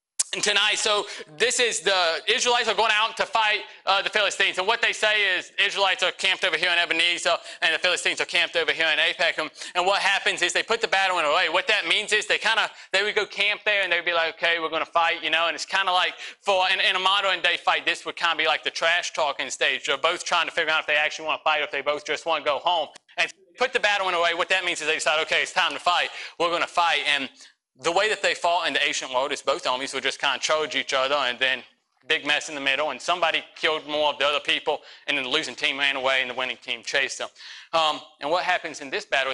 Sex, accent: male, American